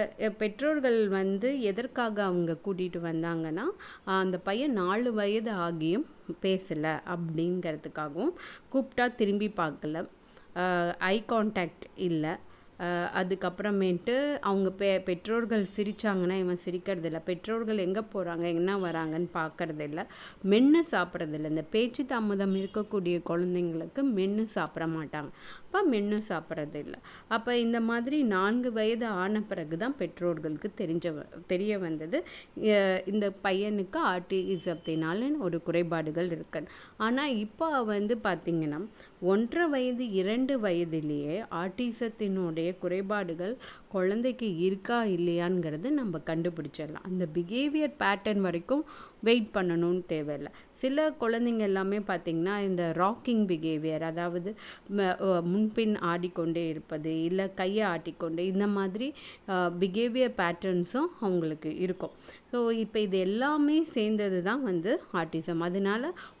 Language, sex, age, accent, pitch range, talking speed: Tamil, female, 30-49, native, 170-220 Hz, 105 wpm